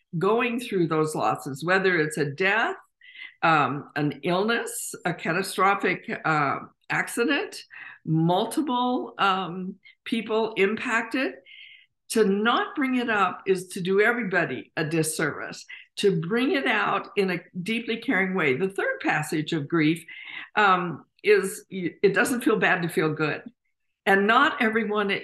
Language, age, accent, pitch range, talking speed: English, 50-69, American, 180-235 Hz, 135 wpm